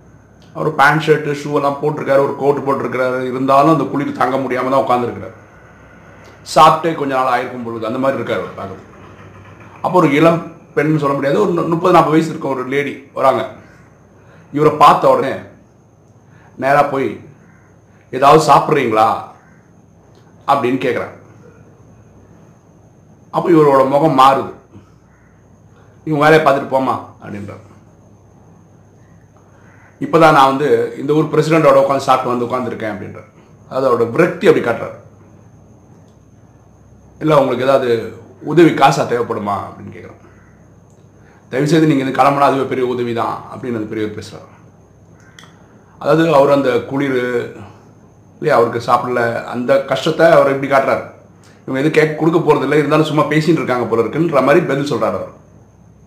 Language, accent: Tamil, native